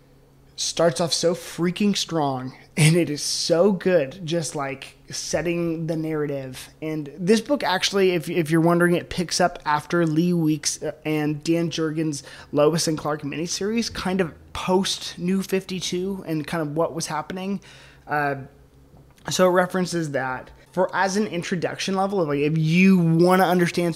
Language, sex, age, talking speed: English, male, 20-39, 160 wpm